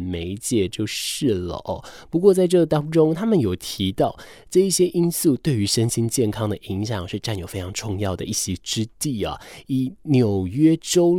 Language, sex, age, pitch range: Chinese, male, 20-39, 100-155 Hz